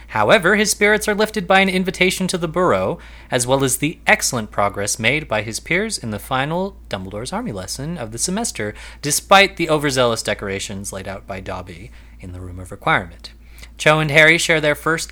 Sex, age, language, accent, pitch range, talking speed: male, 30-49, English, American, 105-165 Hz, 195 wpm